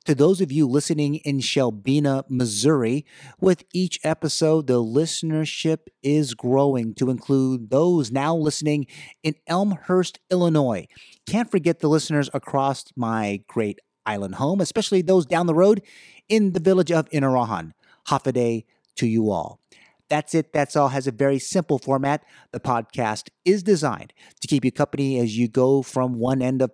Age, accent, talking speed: 30-49, American, 165 wpm